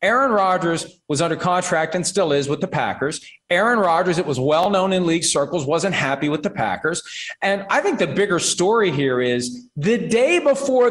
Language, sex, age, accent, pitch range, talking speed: English, male, 40-59, American, 150-225 Hz, 200 wpm